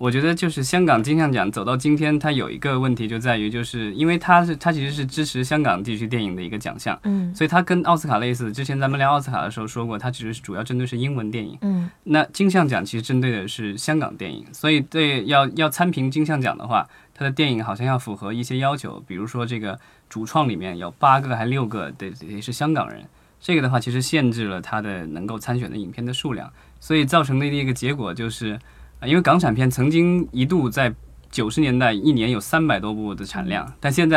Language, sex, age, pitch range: Chinese, male, 20-39, 115-155 Hz